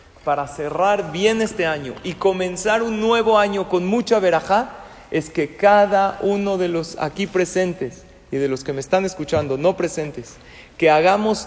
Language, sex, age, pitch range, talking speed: Spanish, male, 40-59, 155-210 Hz, 165 wpm